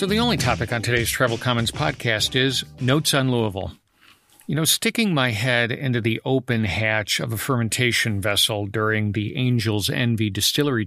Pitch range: 110-140 Hz